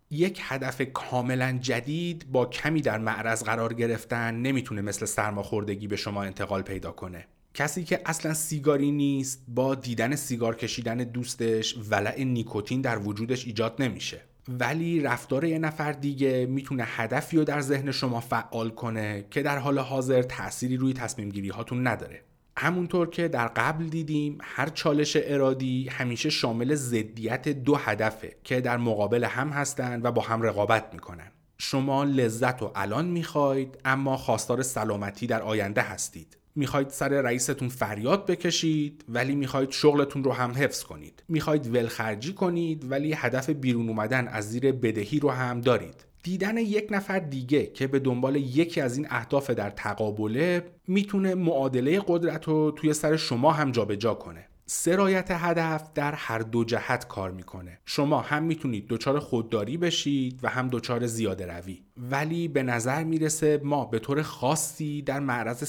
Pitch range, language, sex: 115-150 Hz, Persian, male